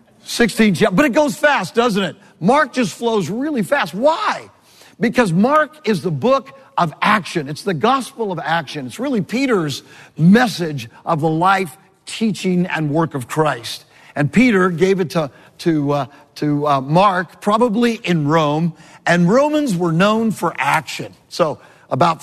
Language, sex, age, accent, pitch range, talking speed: English, male, 50-69, American, 155-220 Hz, 155 wpm